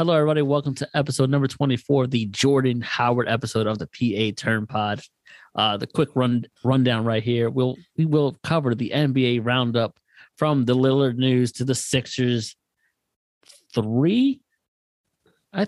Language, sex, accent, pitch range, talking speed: English, male, American, 120-150 Hz, 150 wpm